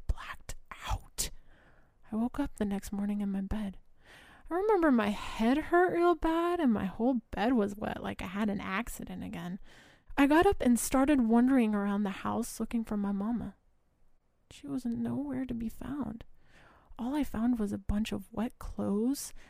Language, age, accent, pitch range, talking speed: English, 20-39, American, 205-255 Hz, 180 wpm